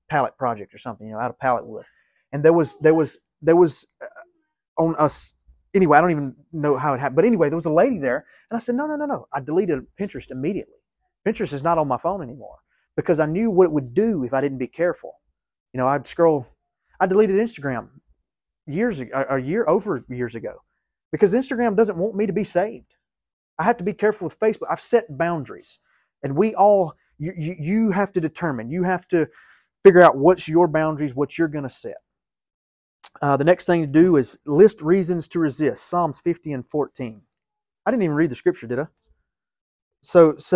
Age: 30-49